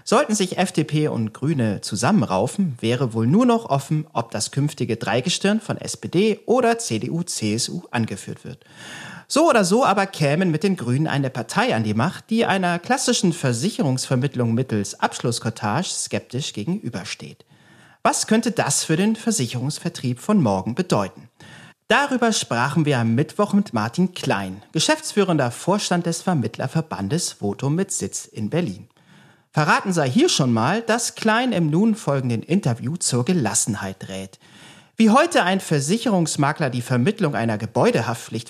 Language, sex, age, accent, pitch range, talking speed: German, male, 40-59, German, 120-195 Hz, 140 wpm